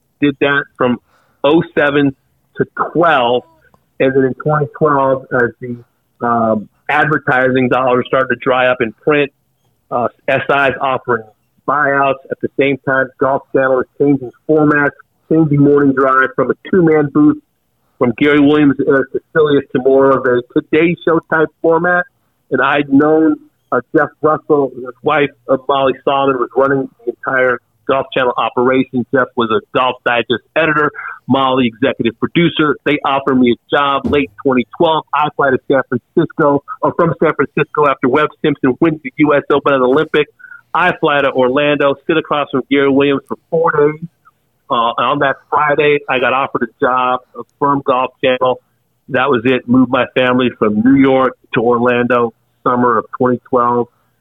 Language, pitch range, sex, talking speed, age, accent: English, 125-150 Hz, male, 160 wpm, 50-69, American